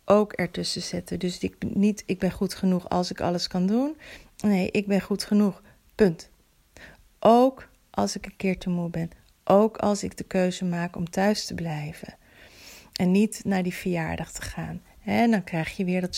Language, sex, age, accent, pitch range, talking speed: Dutch, female, 40-59, Dutch, 190-230 Hz, 195 wpm